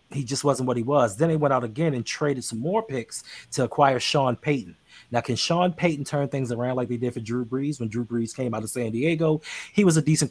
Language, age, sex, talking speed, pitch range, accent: English, 30-49, male, 260 wpm, 120-150 Hz, American